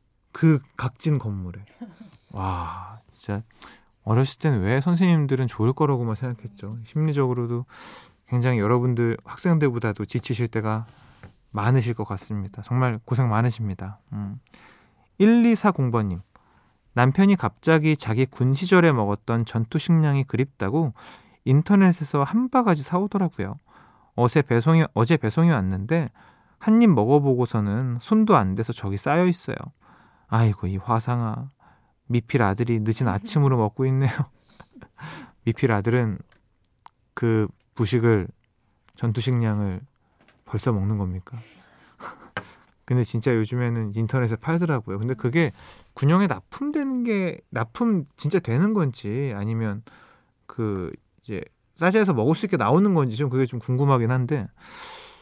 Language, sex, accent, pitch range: Korean, male, native, 110-150 Hz